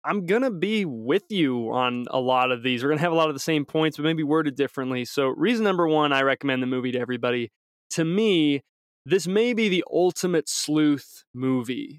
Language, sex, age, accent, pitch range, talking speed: English, male, 20-39, American, 130-165 Hz, 220 wpm